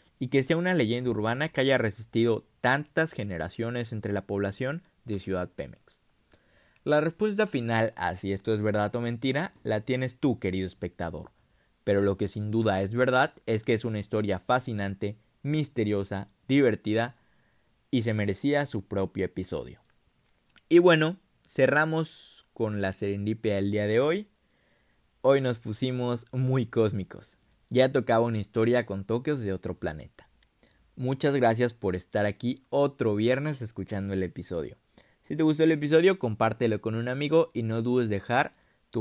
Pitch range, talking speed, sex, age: 105-130 Hz, 155 wpm, male, 20-39